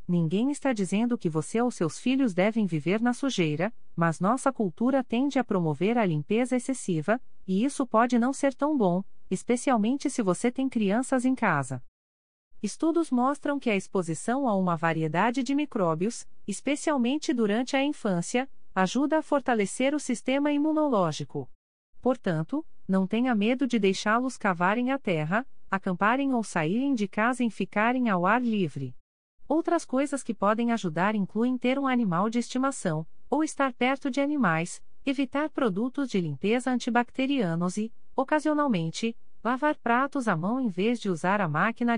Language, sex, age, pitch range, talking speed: Portuguese, female, 40-59, 185-265 Hz, 155 wpm